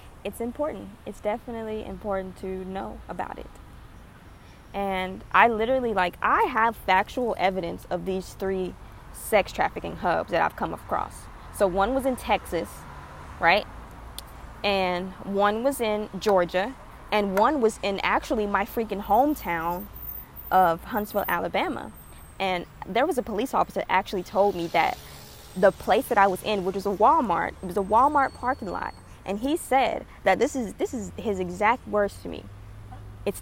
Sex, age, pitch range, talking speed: female, 20-39, 185-235 Hz, 160 wpm